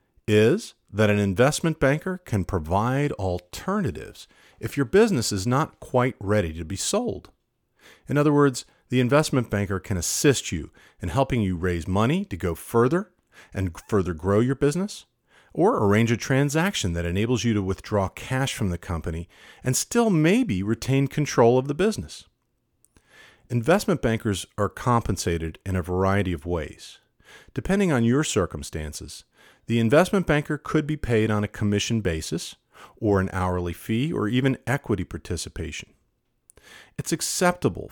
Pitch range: 90-135 Hz